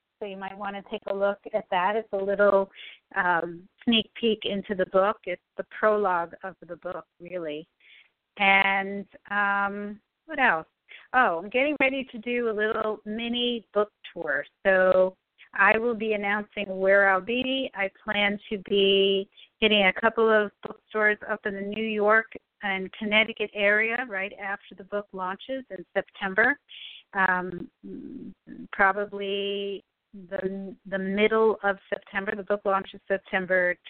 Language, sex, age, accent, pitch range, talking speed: English, female, 40-59, American, 185-215 Hz, 150 wpm